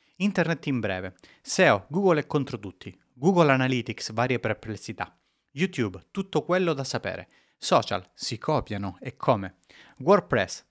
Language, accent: Italian, native